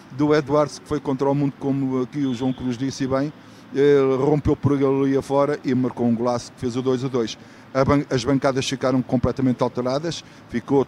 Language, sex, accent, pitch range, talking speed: Portuguese, male, Portuguese, 125-145 Hz, 200 wpm